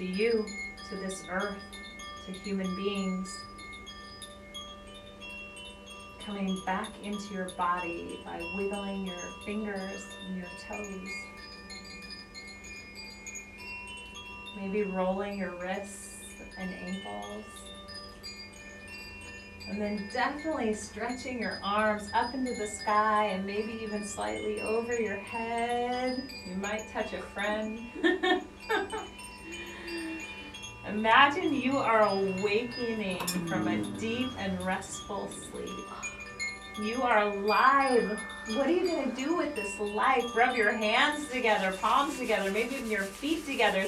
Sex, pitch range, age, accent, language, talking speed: female, 160-235 Hz, 30-49, American, English, 110 wpm